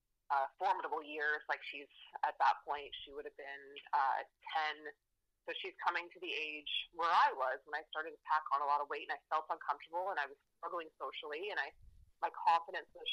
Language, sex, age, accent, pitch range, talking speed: English, female, 30-49, American, 150-185 Hz, 215 wpm